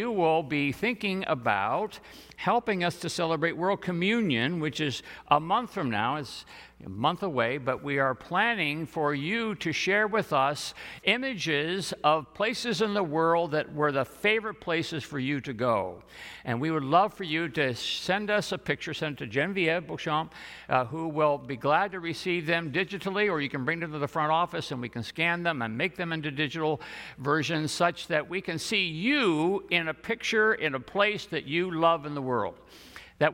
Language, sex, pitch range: English, male, 130-180 Hz